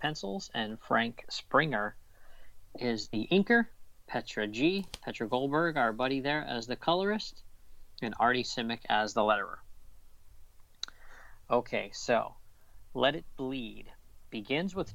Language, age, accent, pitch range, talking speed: English, 40-59, American, 105-150 Hz, 120 wpm